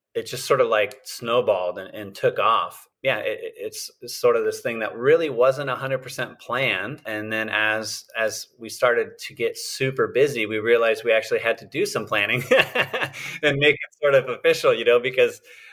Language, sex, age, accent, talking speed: English, male, 30-49, American, 190 wpm